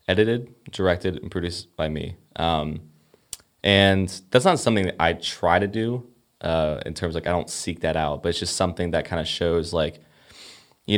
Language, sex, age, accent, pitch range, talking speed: English, male, 20-39, American, 80-100 Hz, 195 wpm